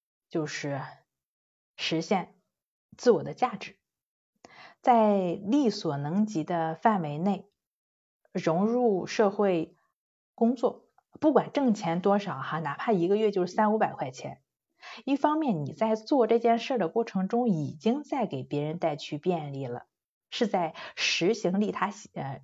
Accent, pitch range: native, 155-230 Hz